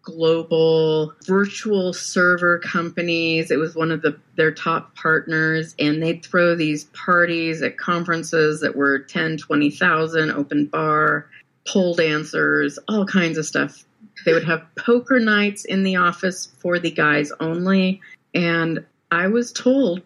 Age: 30-49